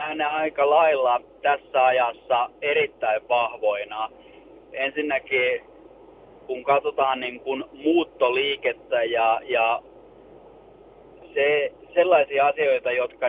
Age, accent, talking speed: 30-49, native, 85 wpm